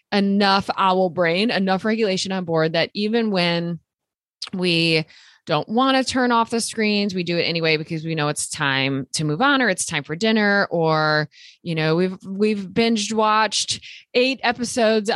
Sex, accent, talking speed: female, American, 175 wpm